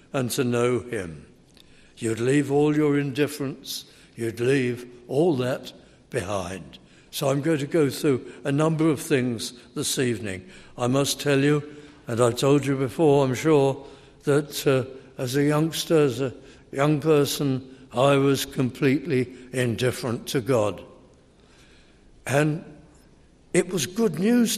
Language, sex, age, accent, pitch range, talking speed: English, male, 60-79, British, 130-180 Hz, 140 wpm